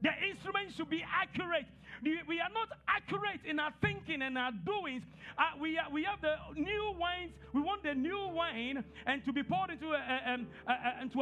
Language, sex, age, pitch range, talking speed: English, male, 50-69, 240-310 Hz, 205 wpm